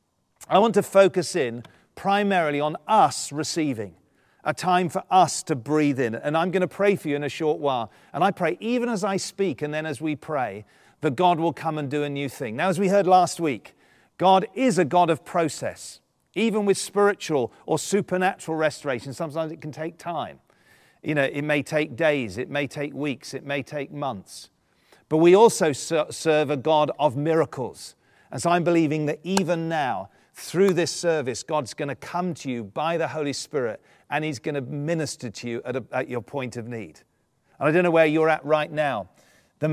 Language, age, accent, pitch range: English, 40-59, British, 135-170 Hz